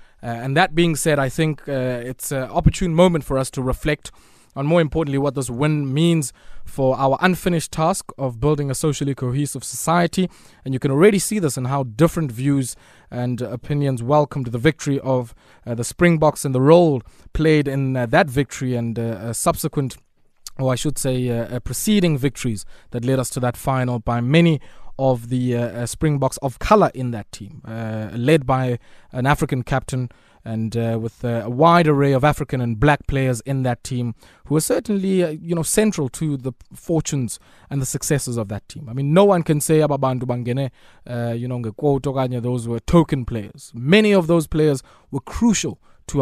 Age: 20-39